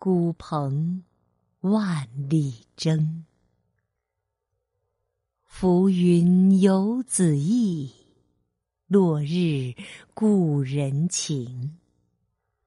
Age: 50-69